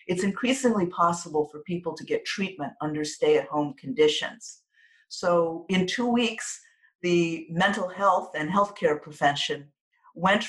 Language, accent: English, American